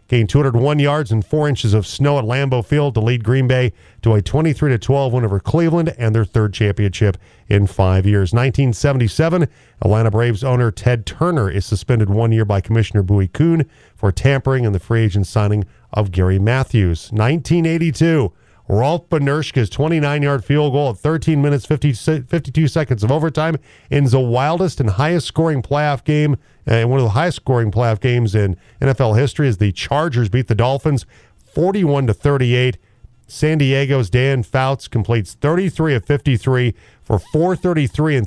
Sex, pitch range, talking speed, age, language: male, 110-145 Hz, 160 wpm, 40-59, English